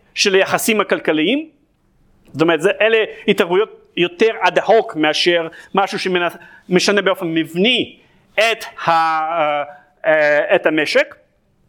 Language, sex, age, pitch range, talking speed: Hebrew, male, 40-59, 170-245 Hz, 115 wpm